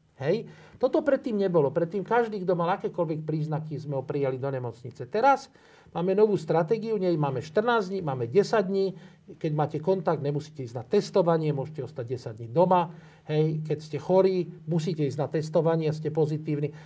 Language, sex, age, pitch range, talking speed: Slovak, male, 50-69, 150-190 Hz, 175 wpm